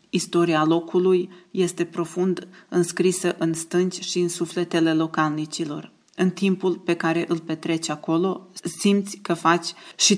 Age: 20-39